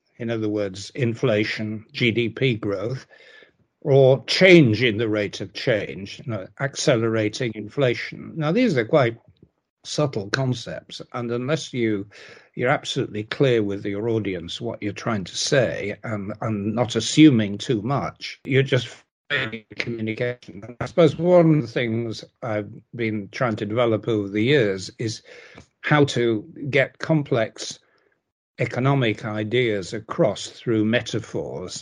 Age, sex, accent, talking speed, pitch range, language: 60-79, male, British, 130 wpm, 105-125 Hz, English